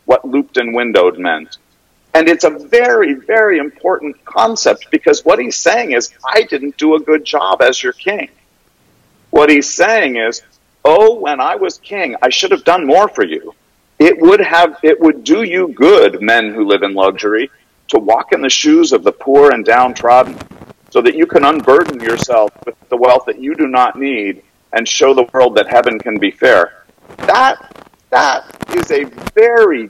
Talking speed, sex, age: 185 wpm, male, 50-69